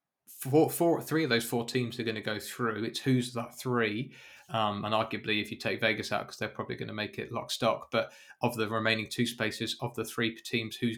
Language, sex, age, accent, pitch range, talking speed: English, male, 20-39, British, 115-130 Hz, 240 wpm